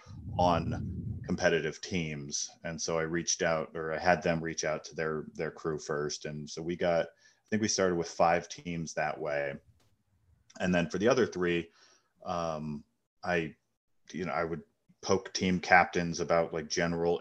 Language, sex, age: English, male, 30-49